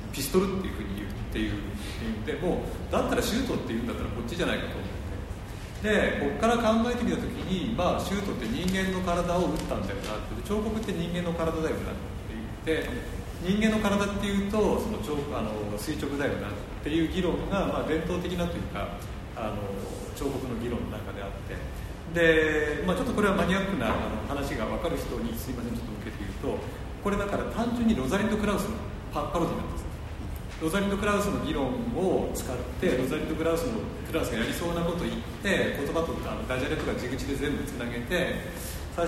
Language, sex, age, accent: Japanese, male, 40-59, native